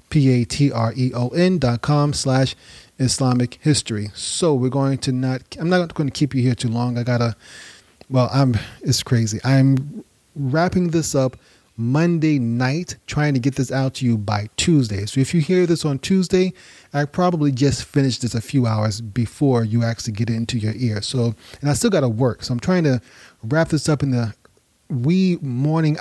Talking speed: 185 wpm